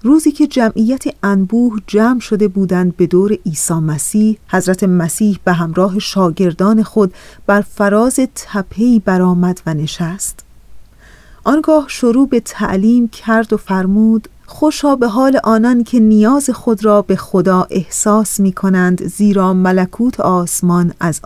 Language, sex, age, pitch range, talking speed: Persian, female, 40-59, 185-225 Hz, 135 wpm